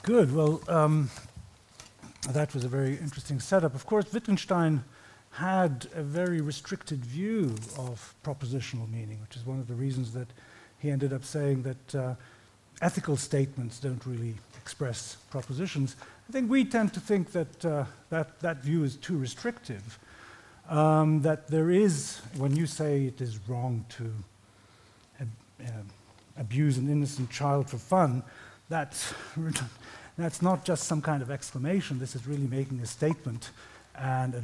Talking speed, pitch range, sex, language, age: 150 wpm, 120-155 Hz, male, English, 50-69